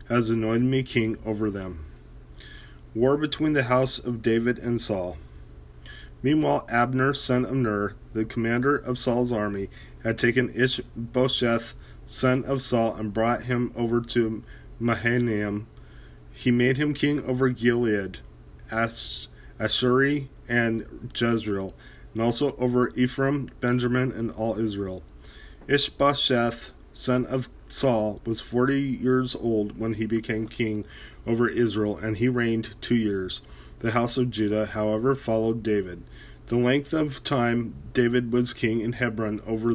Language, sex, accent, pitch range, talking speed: English, male, American, 105-125 Hz, 135 wpm